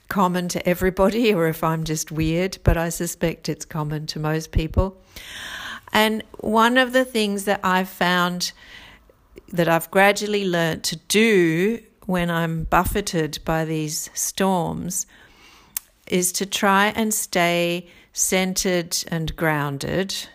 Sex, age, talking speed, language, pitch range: female, 50-69, 130 wpm, English, 160-190 Hz